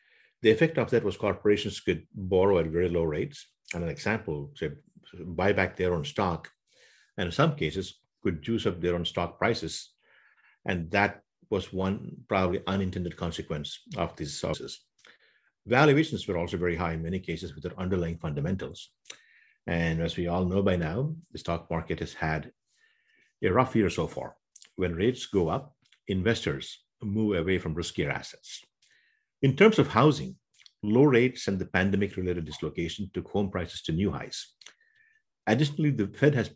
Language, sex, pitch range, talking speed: English, male, 90-115 Hz, 165 wpm